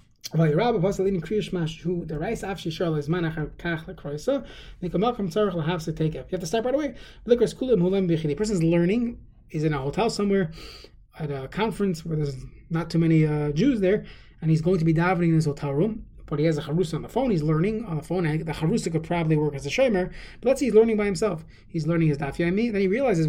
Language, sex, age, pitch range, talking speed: English, male, 20-39, 160-205 Hz, 190 wpm